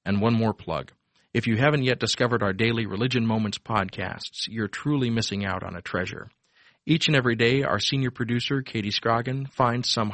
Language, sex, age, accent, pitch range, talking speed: English, male, 40-59, American, 95-125 Hz, 190 wpm